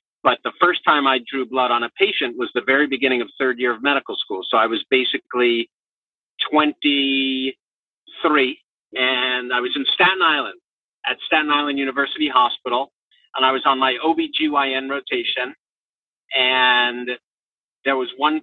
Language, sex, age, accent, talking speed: English, male, 50-69, American, 155 wpm